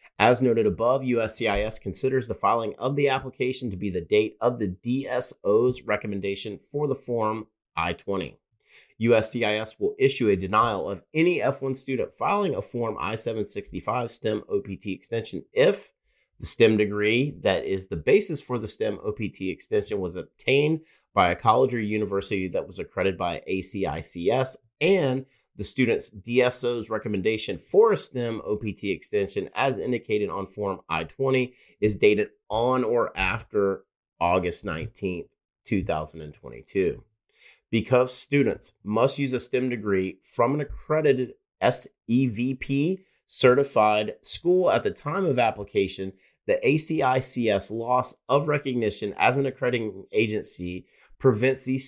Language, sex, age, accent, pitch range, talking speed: English, male, 30-49, American, 105-130 Hz, 130 wpm